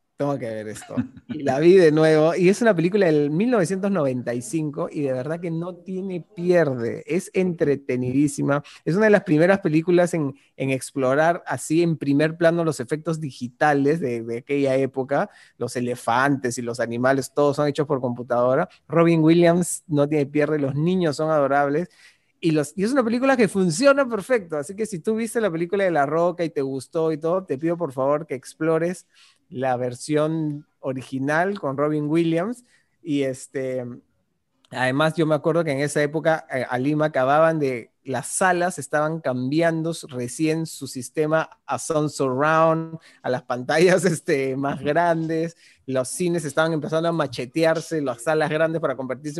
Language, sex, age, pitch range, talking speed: Spanish, male, 30-49, 135-170 Hz, 170 wpm